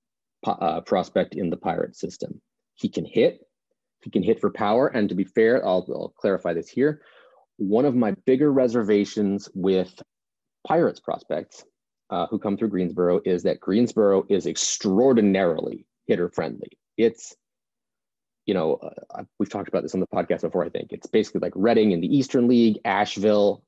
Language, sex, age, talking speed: English, male, 30-49, 165 wpm